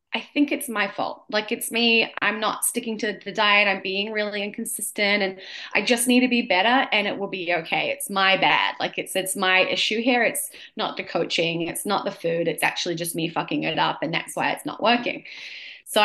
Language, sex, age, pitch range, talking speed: English, female, 20-39, 185-260 Hz, 230 wpm